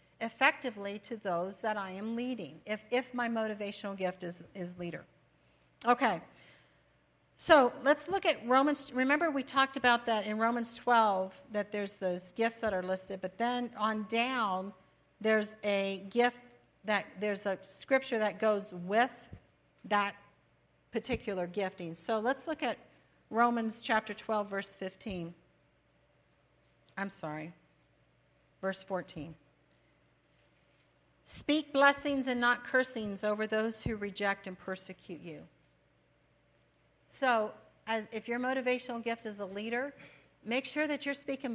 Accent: American